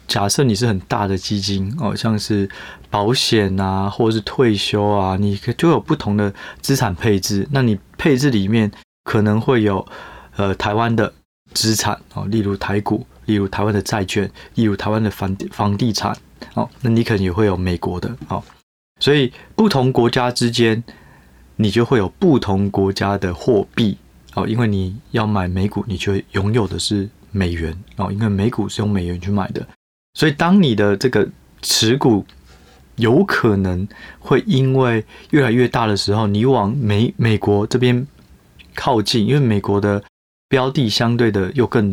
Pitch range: 95-115 Hz